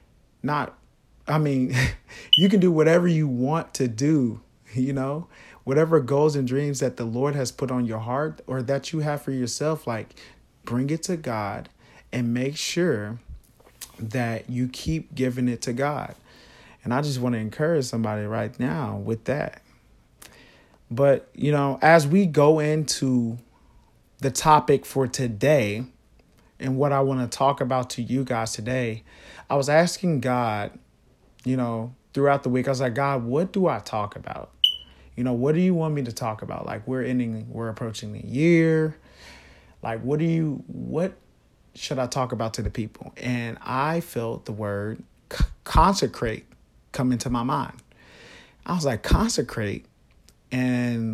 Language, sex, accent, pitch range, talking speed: English, male, American, 115-145 Hz, 165 wpm